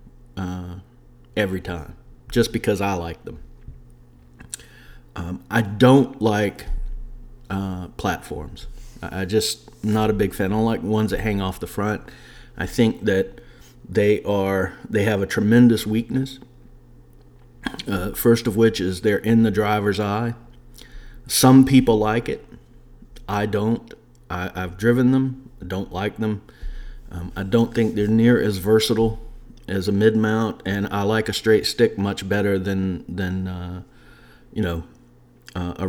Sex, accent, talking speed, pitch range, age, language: male, American, 155 wpm, 85-115 Hz, 40-59, English